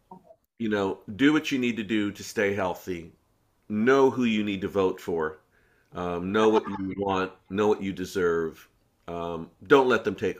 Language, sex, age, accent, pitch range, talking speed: English, male, 50-69, American, 95-120 Hz, 185 wpm